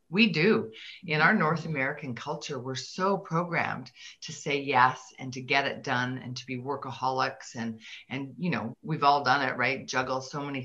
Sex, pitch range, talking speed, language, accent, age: female, 135-175 Hz, 190 wpm, English, American, 40-59